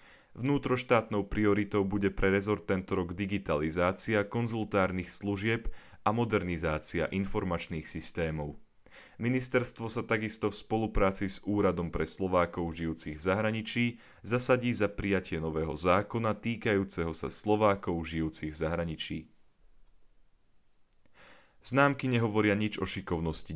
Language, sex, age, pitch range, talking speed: Slovak, male, 30-49, 85-110 Hz, 105 wpm